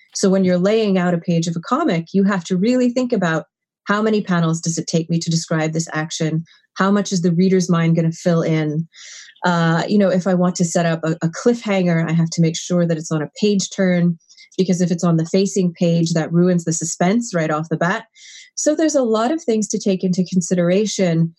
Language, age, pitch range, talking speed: English, 30-49, 165-195 Hz, 235 wpm